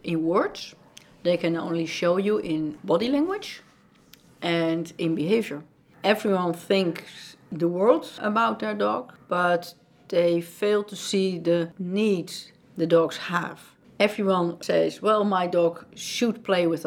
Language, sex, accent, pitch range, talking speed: English, female, Dutch, 170-205 Hz, 135 wpm